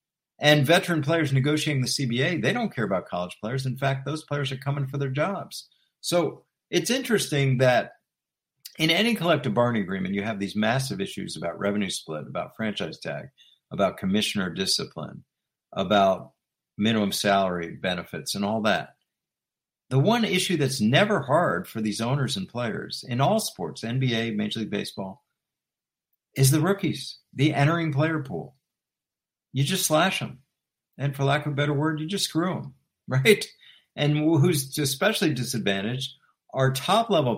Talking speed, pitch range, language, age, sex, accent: 155 wpm, 110-160 Hz, English, 50-69, male, American